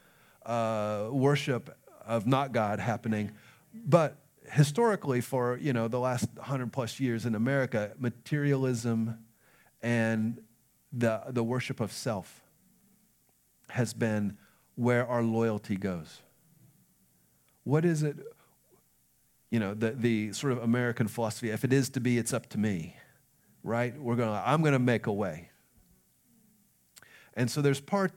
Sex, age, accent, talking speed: male, 40-59, American, 135 wpm